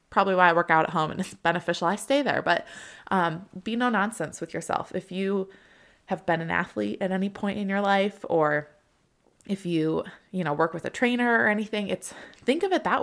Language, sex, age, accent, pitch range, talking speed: English, female, 20-39, American, 165-210 Hz, 220 wpm